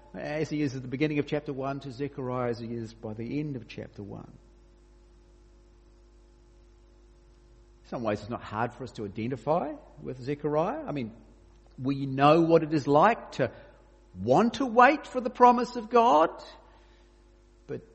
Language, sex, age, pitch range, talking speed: English, male, 50-69, 110-145 Hz, 165 wpm